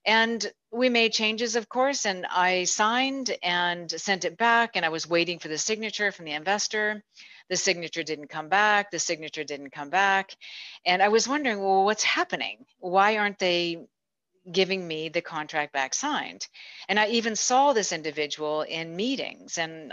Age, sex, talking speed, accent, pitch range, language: 40-59, female, 175 wpm, American, 175-240 Hz, English